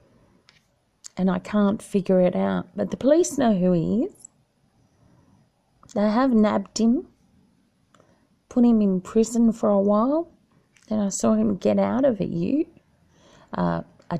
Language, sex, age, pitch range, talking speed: English, female, 30-49, 190-240 Hz, 150 wpm